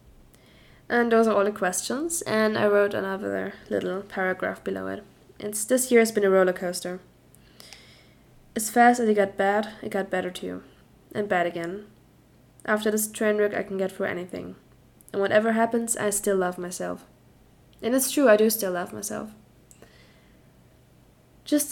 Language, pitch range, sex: English, 185-225 Hz, female